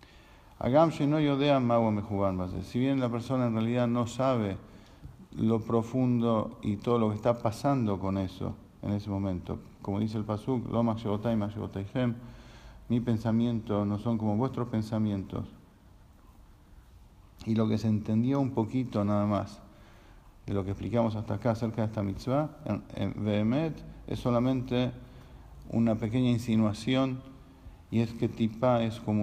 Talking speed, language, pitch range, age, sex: 145 wpm, English, 100-120 Hz, 50-69, male